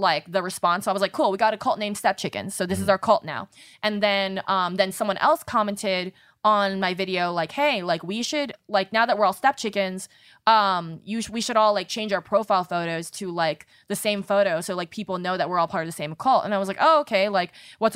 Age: 20-39